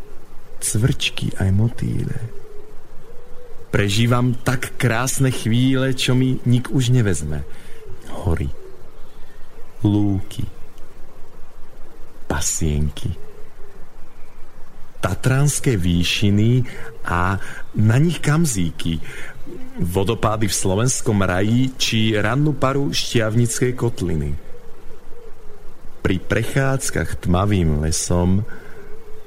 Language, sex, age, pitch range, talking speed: Slovak, male, 40-59, 90-130 Hz, 70 wpm